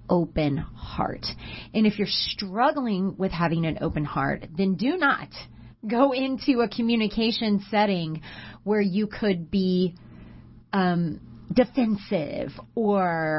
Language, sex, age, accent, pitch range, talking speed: English, female, 30-49, American, 160-215 Hz, 115 wpm